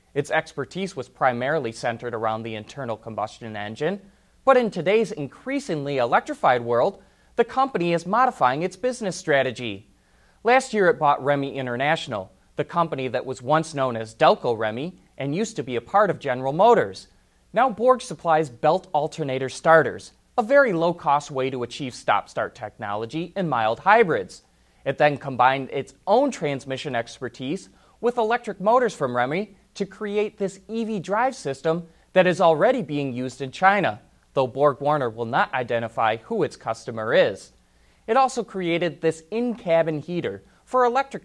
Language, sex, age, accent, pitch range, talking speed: English, male, 30-49, American, 130-200 Hz, 155 wpm